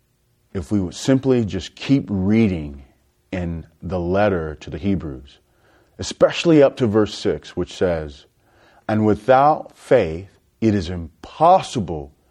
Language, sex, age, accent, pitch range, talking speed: English, male, 40-59, American, 90-130 Hz, 125 wpm